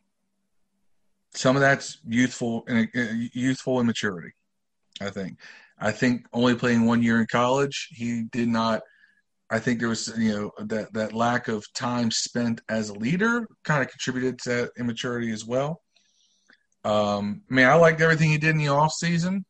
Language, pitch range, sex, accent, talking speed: English, 120-165 Hz, male, American, 170 wpm